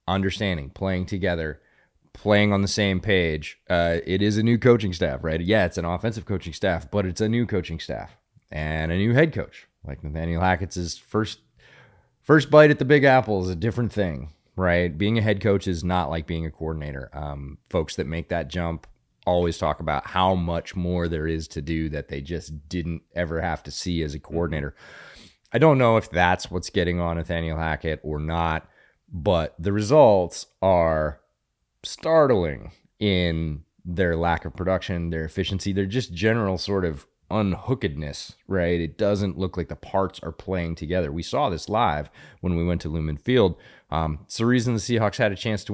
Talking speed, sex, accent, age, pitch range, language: 190 wpm, male, American, 30-49, 80-100 Hz, English